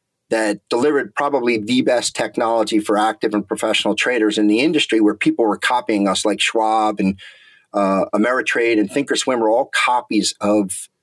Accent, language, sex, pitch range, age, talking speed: American, English, male, 105-115 Hz, 40-59, 165 wpm